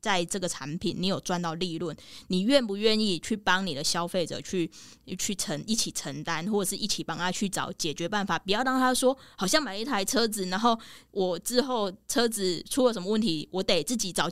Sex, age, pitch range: female, 20-39, 175-225 Hz